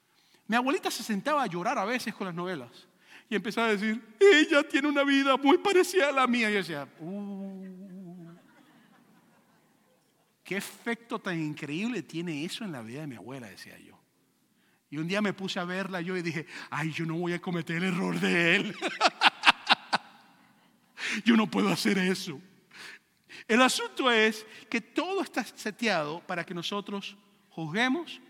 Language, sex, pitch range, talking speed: English, male, 170-225 Hz, 165 wpm